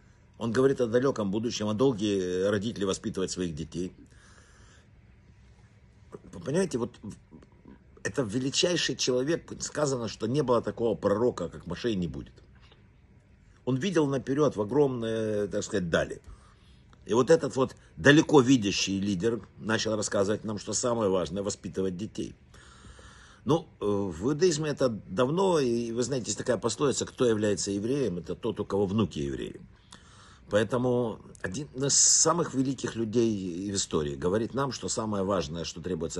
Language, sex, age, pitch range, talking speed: Russian, male, 60-79, 95-125 Hz, 145 wpm